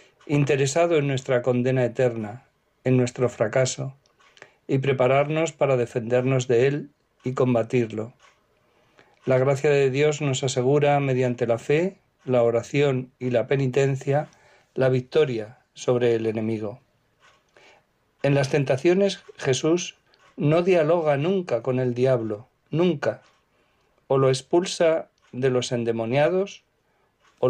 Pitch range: 125-150 Hz